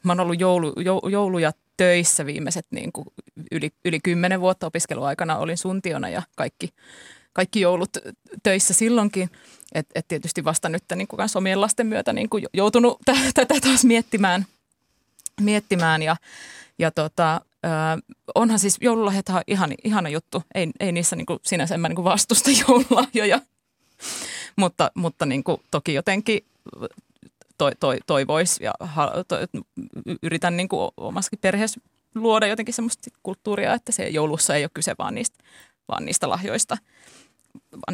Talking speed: 140 wpm